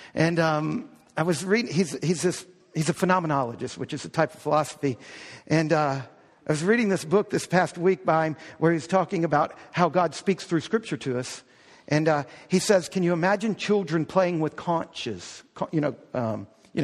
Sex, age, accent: male, 50-69, American